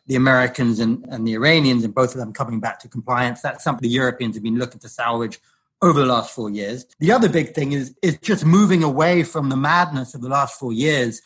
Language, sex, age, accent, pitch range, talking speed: English, male, 30-49, British, 125-165 Hz, 240 wpm